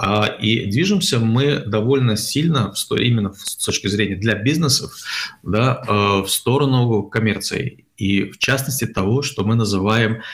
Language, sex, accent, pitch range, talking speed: Russian, male, native, 100-130 Hz, 130 wpm